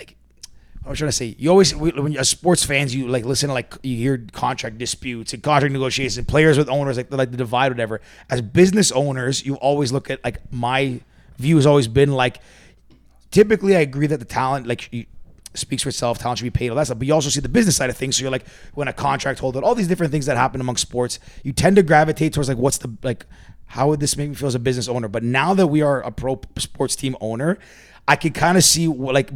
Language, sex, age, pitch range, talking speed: English, male, 30-49, 120-140 Hz, 255 wpm